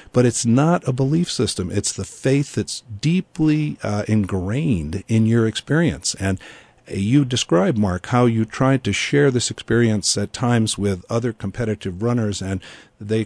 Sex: male